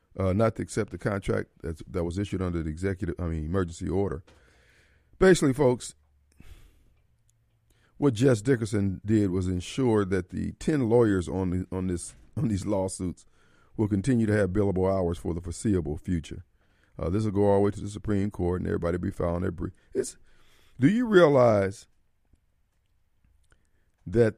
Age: 50-69